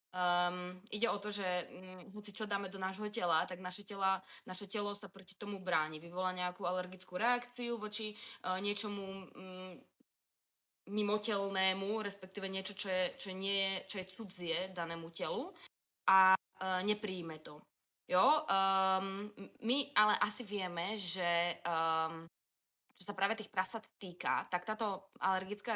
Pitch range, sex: 180-210 Hz, female